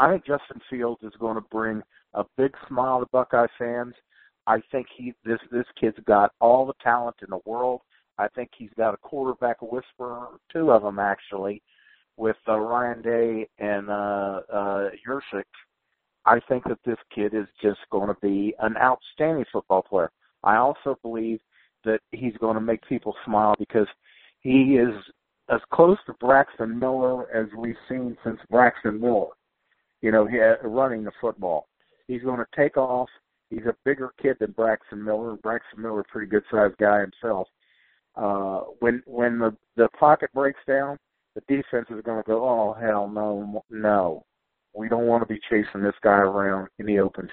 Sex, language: male, English